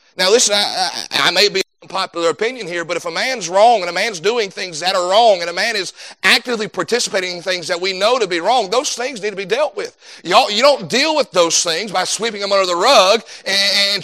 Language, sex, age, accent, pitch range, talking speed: English, male, 40-59, American, 195-255 Hz, 250 wpm